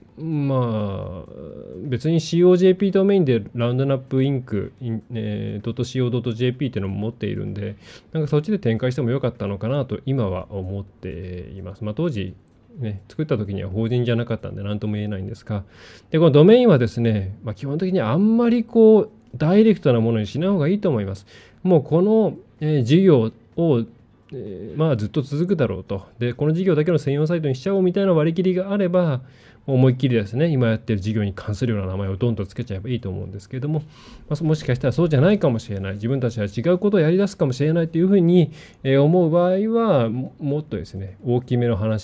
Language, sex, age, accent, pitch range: Japanese, male, 20-39, native, 105-150 Hz